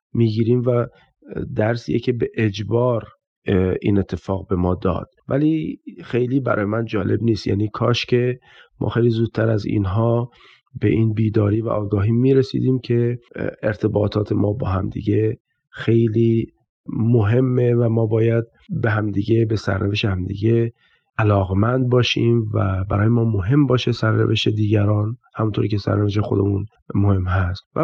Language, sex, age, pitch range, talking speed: Persian, male, 40-59, 105-125 Hz, 140 wpm